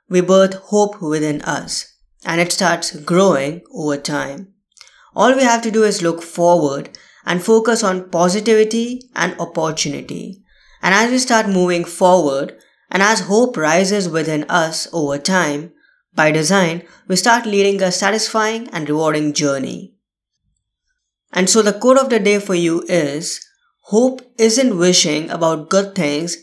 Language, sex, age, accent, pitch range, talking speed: English, female, 20-39, Indian, 160-210 Hz, 150 wpm